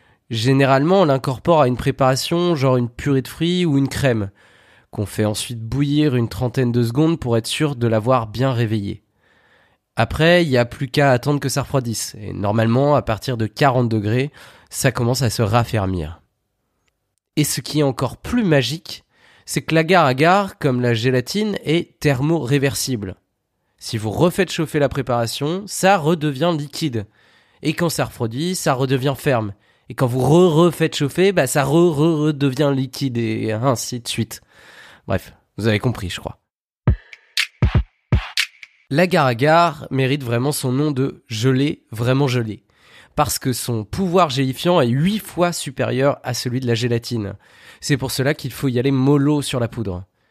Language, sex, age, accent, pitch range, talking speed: French, male, 20-39, French, 120-155 Hz, 165 wpm